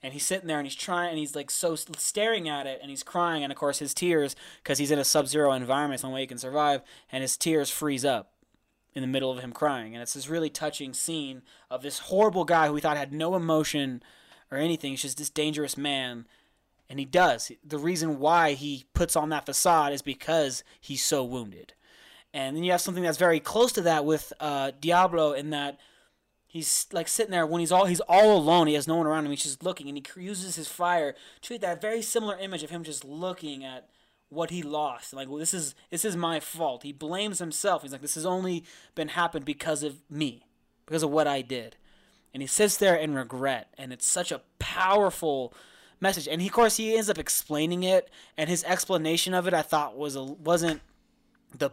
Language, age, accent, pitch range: English, 20-39, American, 140-175 Hz